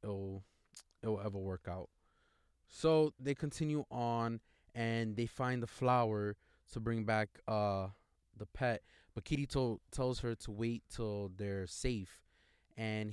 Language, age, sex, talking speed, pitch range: English, 20-39, male, 135 wpm, 105-125 Hz